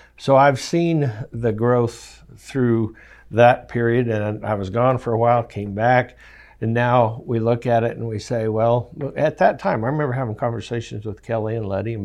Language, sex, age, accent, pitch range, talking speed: English, male, 60-79, American, 105-125 Hz, 195 wpm